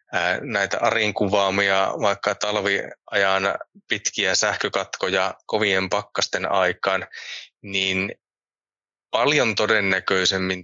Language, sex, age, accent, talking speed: Finnish, male, 20-39, native, 70 wpm